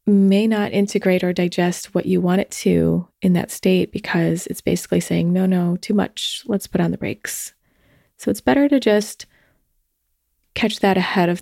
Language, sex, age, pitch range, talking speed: English, female, 20-39, 180-220 Hz, 185 wpm